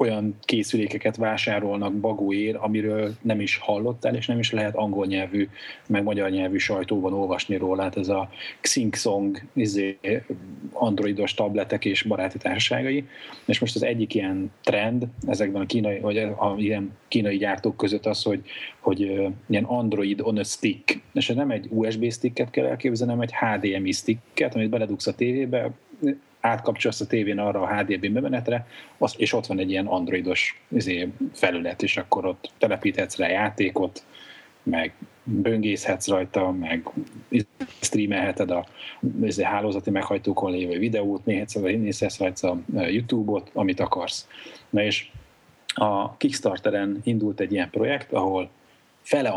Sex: male